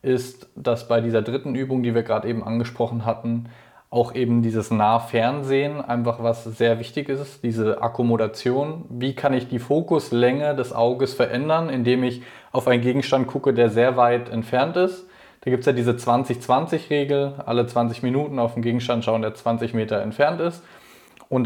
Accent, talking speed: German, 175 wpm